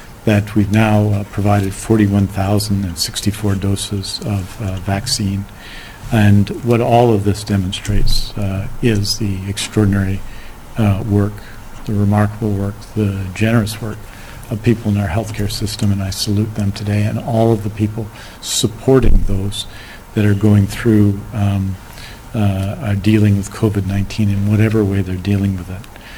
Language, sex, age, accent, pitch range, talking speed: English, male, 50-69, American, 100-110 Hz, 135 wpm